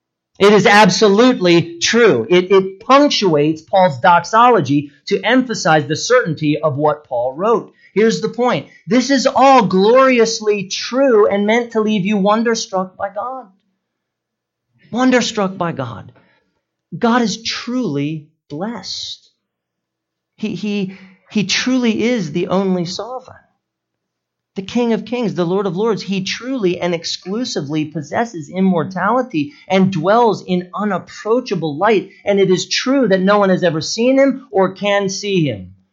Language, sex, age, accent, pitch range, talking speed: English, male, 40-59, American, 170-225 Hz, 135 wpm